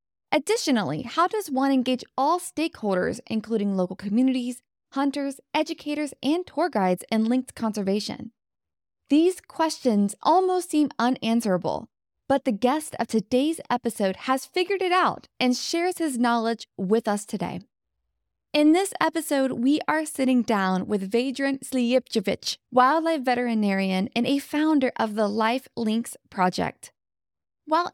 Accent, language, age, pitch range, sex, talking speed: American, English, 20-39, 220-290 Hz, female, 130 wpm